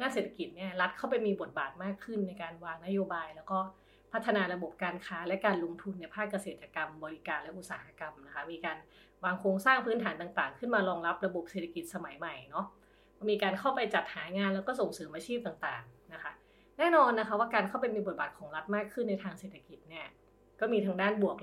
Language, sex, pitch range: Thai, female, 175-210 Hz